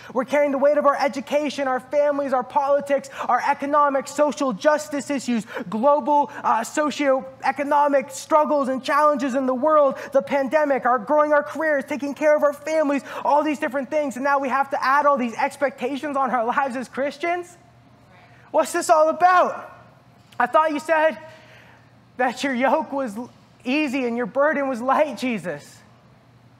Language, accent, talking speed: English, American, 165 wpm